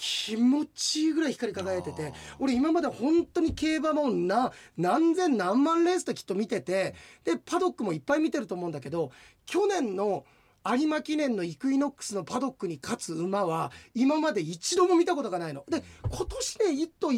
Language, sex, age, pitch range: Japanese, male, 30-49, 210-345 Hz